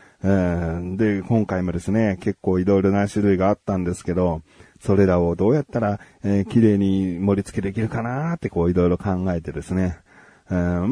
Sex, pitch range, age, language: male, 95-140 Hz, 40-59, Japanese